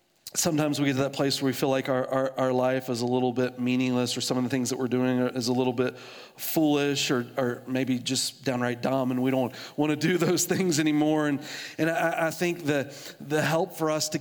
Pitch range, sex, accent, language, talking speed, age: 135-155 Hz, male, American, English, 245 wpm, 40-59